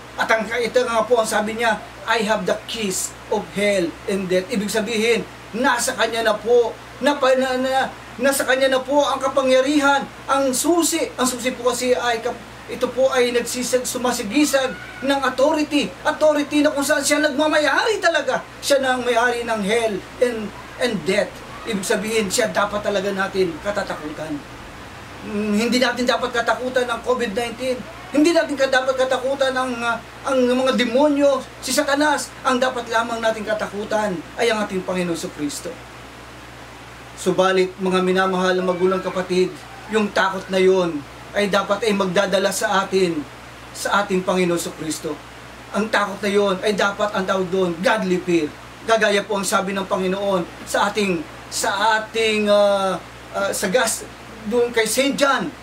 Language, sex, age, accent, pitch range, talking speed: Filipino, male, 20-39, native, 195-255 Hz, 150 wpm